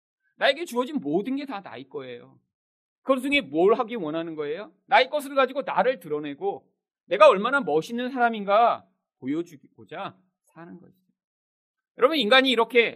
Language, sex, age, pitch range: Korean, male, 40-59, 175-265 Hz